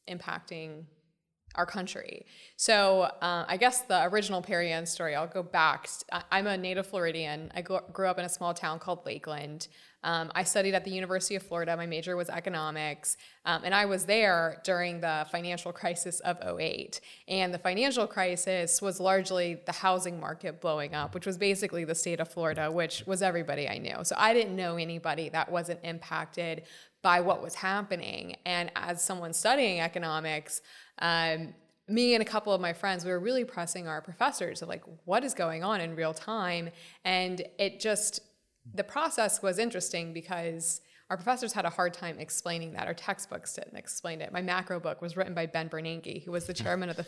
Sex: female